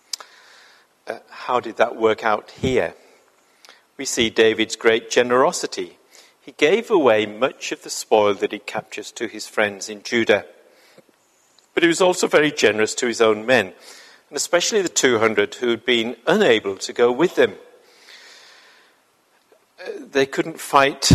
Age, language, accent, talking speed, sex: 50-69, English, British, 145 wpm, male